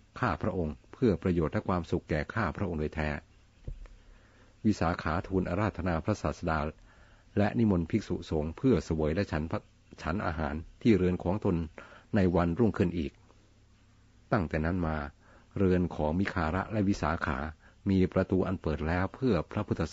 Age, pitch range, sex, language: 60-79, 85-105 Hz, male, Thai